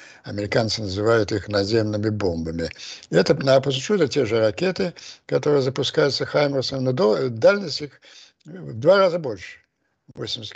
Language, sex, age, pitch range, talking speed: Russian, male, 60-79, 100-130 Hz, 125 wpm